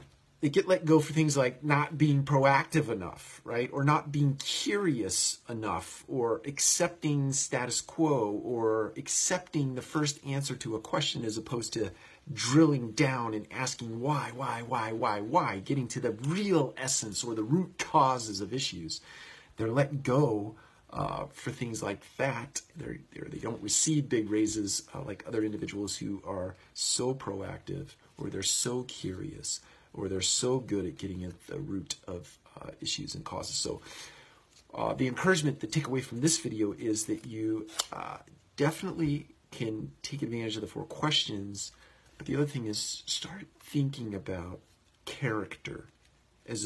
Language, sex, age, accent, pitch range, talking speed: English, male, 40-59, American, 110-145 Hz, 160 wpm